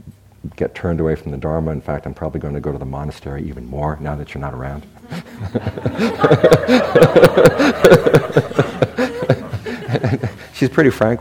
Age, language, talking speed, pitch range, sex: 60-79, English, 140 wpm, 75-95 Hz, male